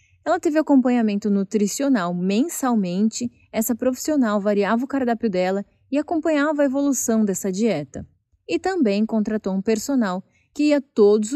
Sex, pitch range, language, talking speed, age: female, 190-250 Hz, Portuguese, 130 wpm, 20-39